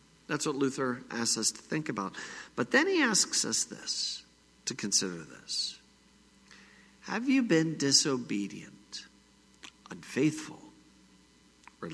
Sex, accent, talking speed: male, American, 115 wpm